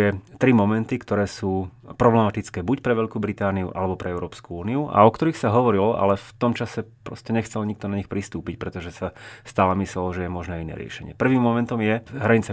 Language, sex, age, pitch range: Slovak, male, 30-49, 90-110 Hz